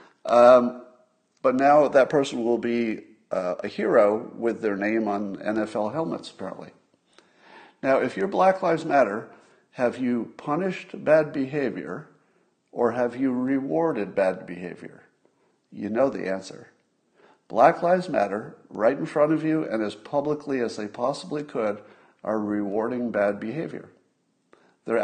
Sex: male